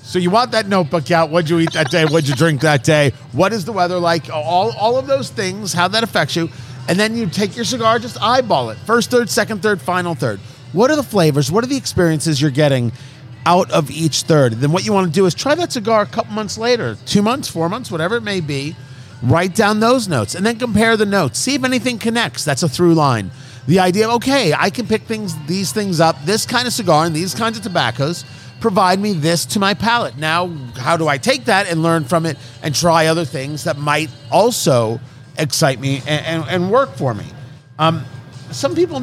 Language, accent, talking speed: English, American, 230 wpm